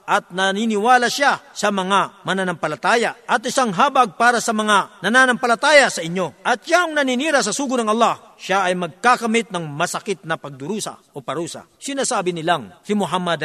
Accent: native